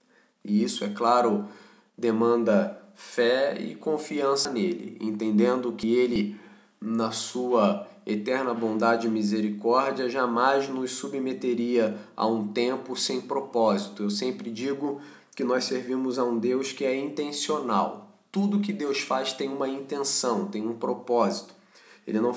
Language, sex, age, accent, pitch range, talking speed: English, male, 20-39, Brazilian, 120-150 Hz, 135 wpm